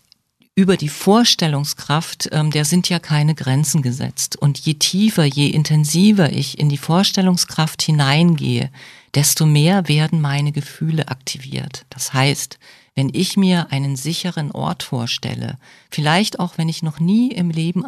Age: 50-69